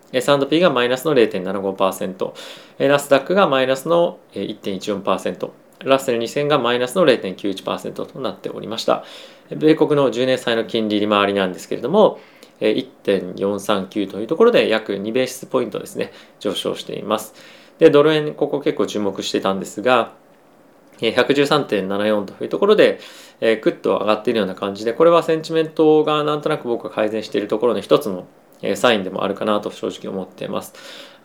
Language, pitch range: Japanese, 105-145 Hz